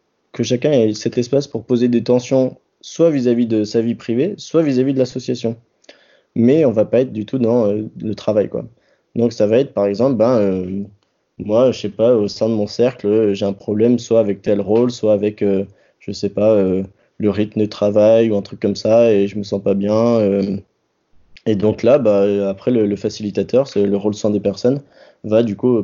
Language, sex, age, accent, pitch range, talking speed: French, male, 20-39, French, 100-115 Hz, 225 wpm